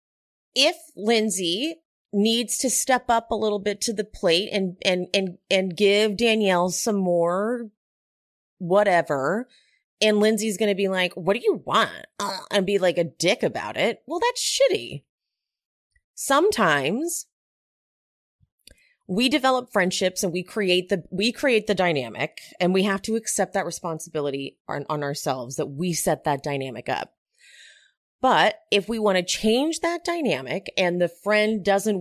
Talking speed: 150 wpm